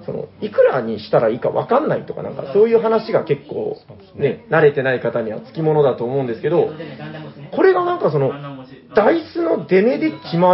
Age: 40-59